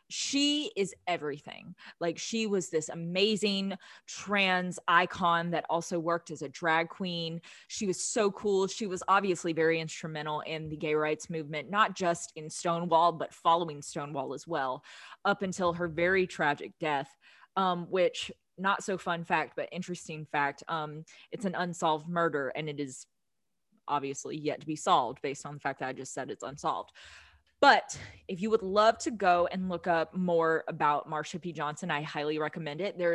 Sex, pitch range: female, 155-195 Hz